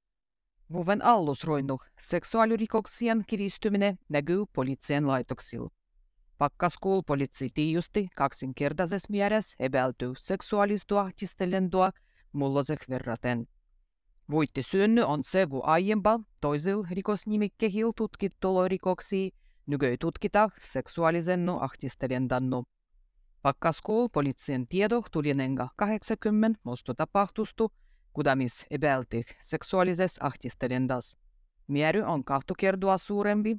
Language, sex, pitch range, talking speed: Finnish, female, 130-205 Hz, 85 wpm